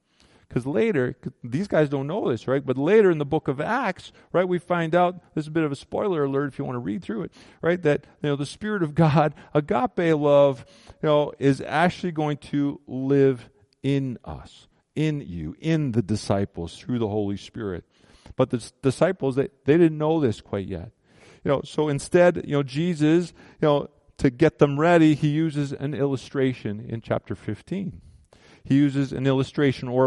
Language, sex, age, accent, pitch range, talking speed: English, male, 40-59, American, 110-150 Hz, 195 wpm